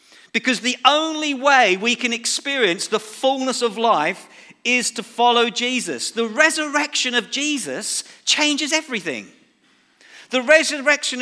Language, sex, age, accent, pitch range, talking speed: English, male, 50-69, British, 220-270 Hz, 125 wpm